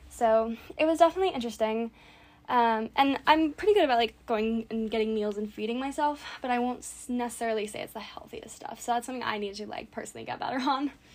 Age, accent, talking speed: 10-29, American, 210 wpm